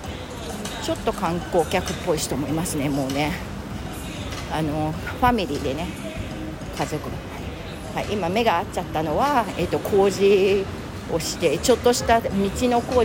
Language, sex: Japanese, female